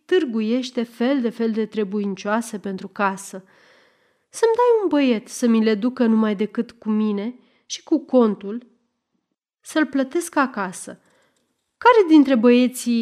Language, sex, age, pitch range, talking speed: Romanian, female, 30-49, 210-290 Hz, 135 wpm